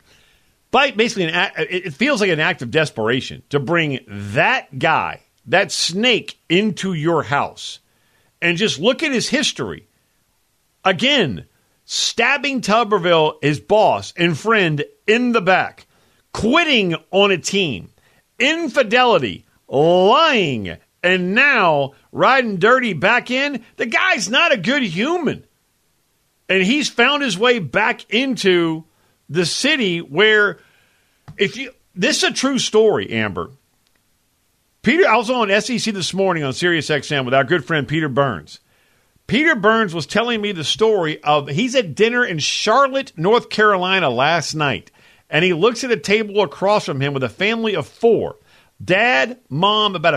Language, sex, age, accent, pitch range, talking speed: English, male, 50-69, American, 160-235 Hz, 140 wpm